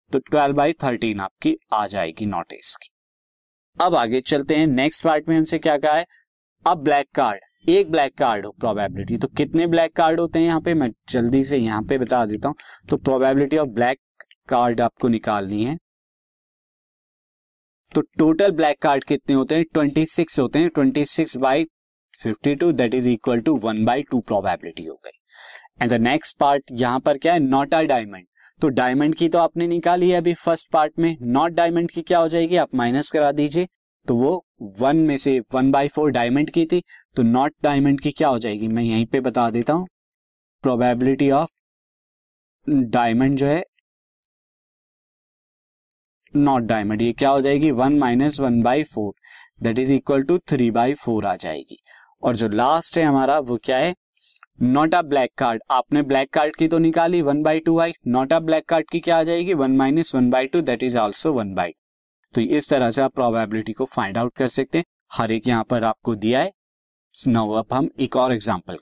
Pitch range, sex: 125-160 Hz, male